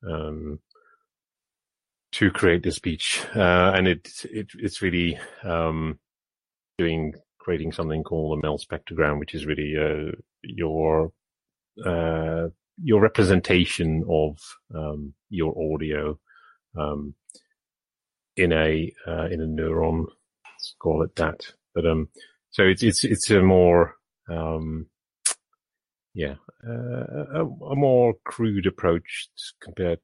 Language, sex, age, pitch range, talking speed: English, male, 30-49, 80-105 Hz, 120 wpm